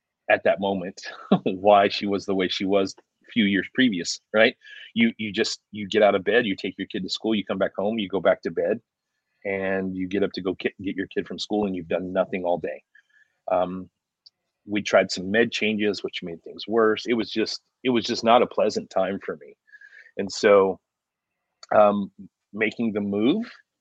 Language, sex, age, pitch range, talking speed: English, male, 30-49, 95-105 Hz, 210 wpm